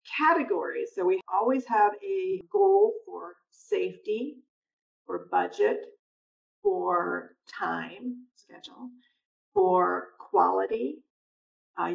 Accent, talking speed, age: American, 85 wpm, 50-69